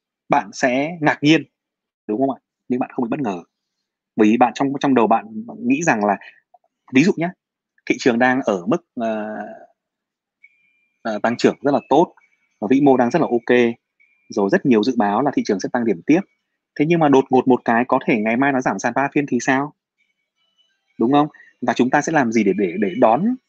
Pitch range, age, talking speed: 120-160 Hz, 20-39, 220 wpm